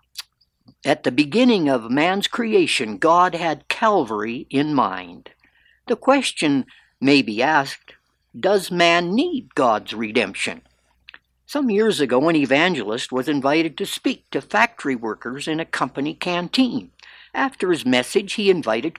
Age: 60-79